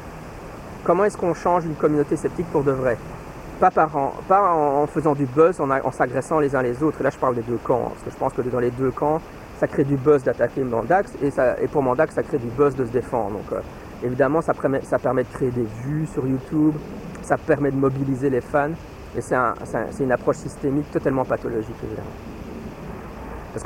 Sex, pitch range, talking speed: male, 130-165 Hz, 235 wpm